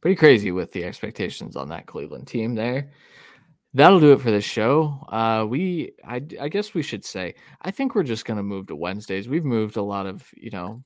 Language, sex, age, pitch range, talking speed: English, male, 20-39, 95-120 Hz, 220 wpm